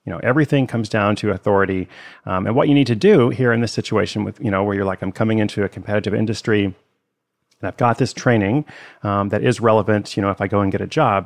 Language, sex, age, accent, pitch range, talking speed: English, male, 30-49, American, 105-130 Hz, 255 wpm